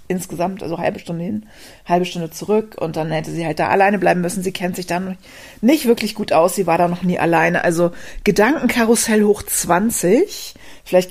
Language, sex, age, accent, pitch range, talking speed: German, female, 30-49, German, 170-205 Hz, 195 wpm